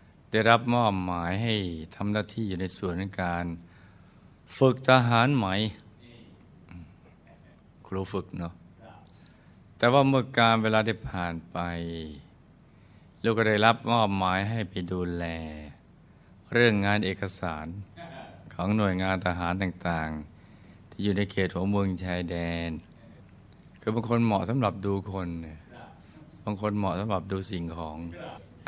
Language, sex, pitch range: Thai, male, 90-110 Hz